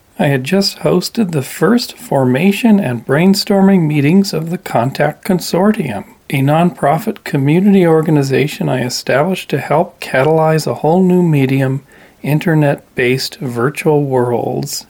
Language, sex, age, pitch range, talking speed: English, male, 40-59, 140-185 Hz, 125 wpm